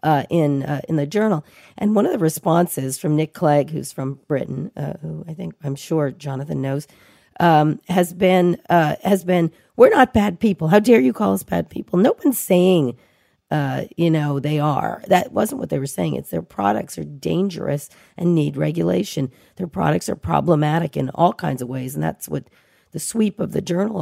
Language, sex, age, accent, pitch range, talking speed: English, female, 40-59, American, 135-180 Hz, 200 wpm